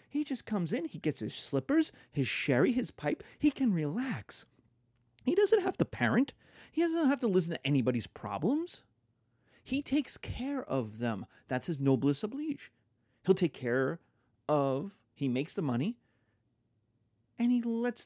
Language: English